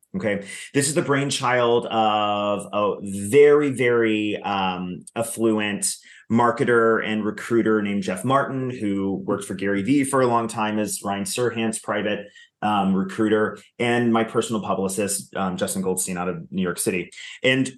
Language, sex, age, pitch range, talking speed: English, male, 30-49, 110-145 Hz, 150 wpm